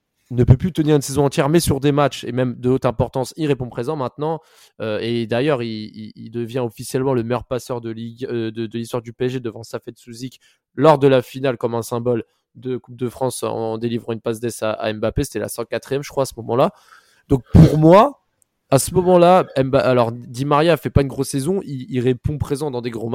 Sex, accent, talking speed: male, French, 235 wpm